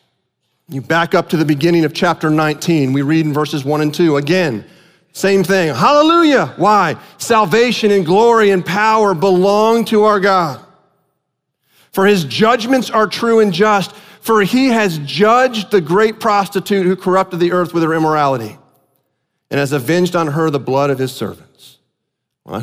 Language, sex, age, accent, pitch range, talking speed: English, male, 40-59, American, 155-215 Hz, 165 wpm